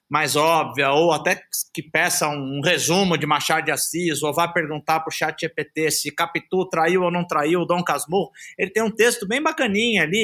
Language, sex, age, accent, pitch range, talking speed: Portuguese, male, 50-69, Brazilian, 155-190 Hz, 205 wpm